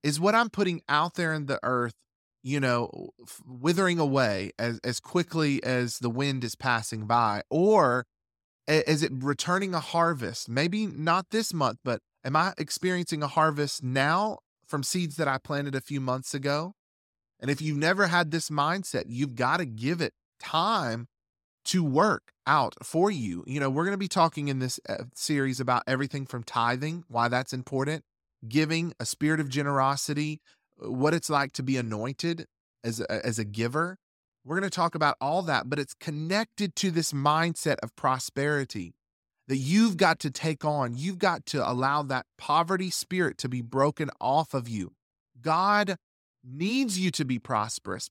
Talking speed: 175 wpm